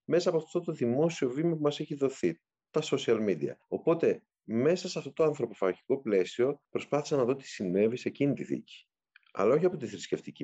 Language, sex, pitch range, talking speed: Greek, male, 85-135 Hz, 195 wpm